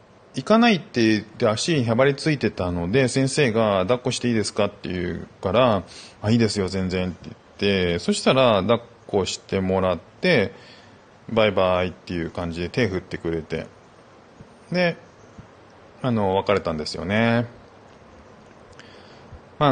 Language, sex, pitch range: Japanese, male, 95-125 Hz